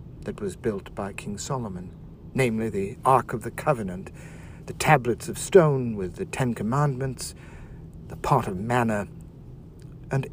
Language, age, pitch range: English, 60-79, 120-150 Hz